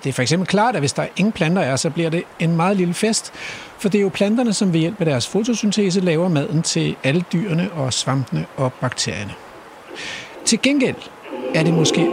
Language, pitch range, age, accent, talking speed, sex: Danish, 145-205 Hz, 60-79, native, 215 wpm, male